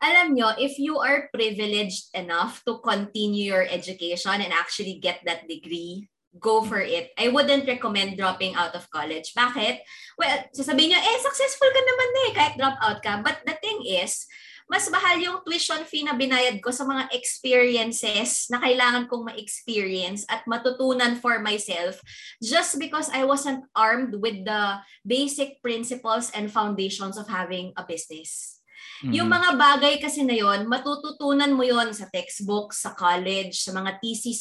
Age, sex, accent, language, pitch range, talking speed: 20-39, female, Filipino, English, 195-280 Hz, 165 wpm